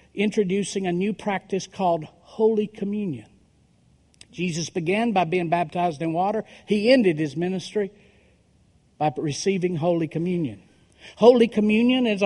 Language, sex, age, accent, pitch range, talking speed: English, male, 50-69, American, 165-210 Hz, 120 wpm